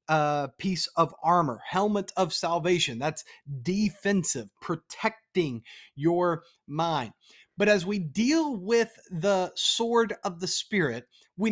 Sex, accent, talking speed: male, American, 120 wpm